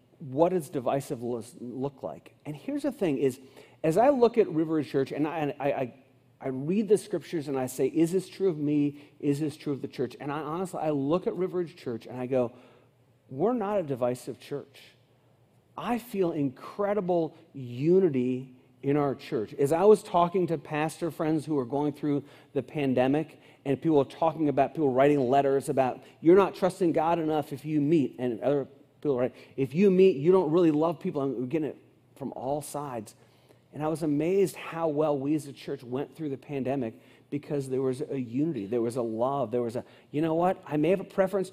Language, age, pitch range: English, 40-59, 130-175 Hz